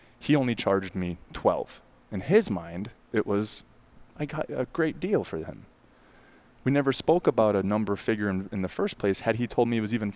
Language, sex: English, male